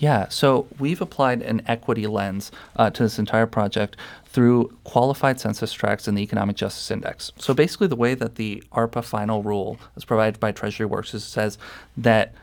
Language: English